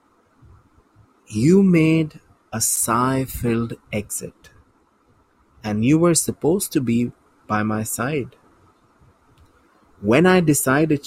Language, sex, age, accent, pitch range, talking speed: English, male, 30-49, Indian, 110-145 Hz, 90 wpm